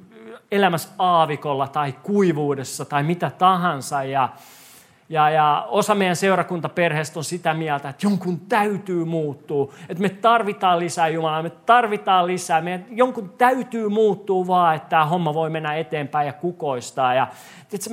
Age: 40-59